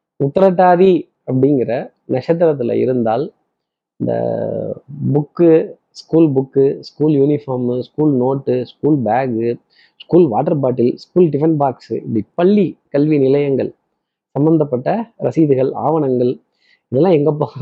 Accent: native